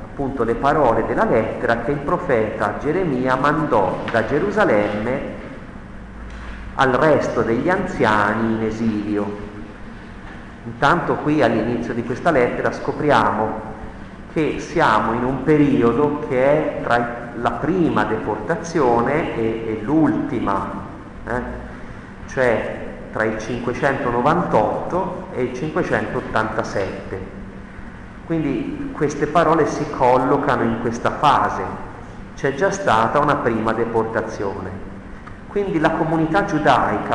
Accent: native